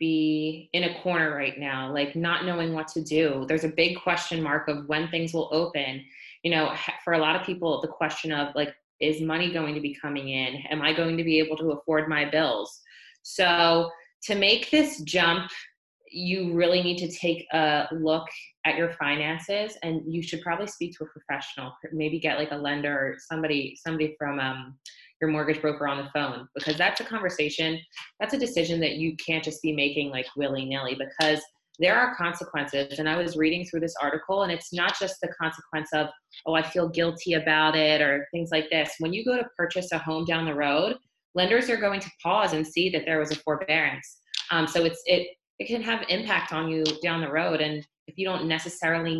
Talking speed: 210 wpm